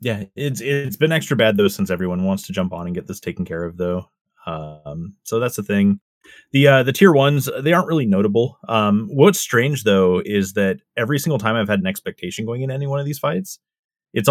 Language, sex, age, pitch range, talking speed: English, male, 30-49, 95-150 Hz, 230 wpm